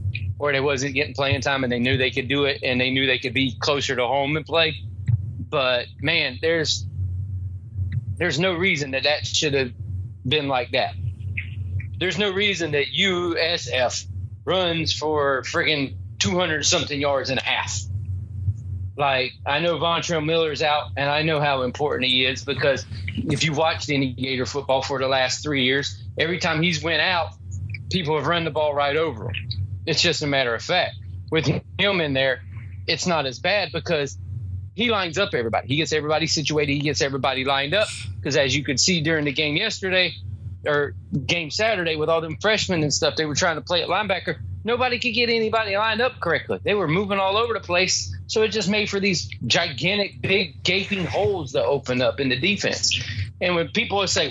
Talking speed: 195 wpm